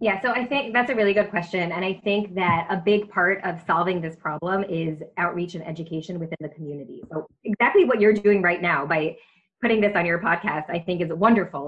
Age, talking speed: 20-39, 225 wpm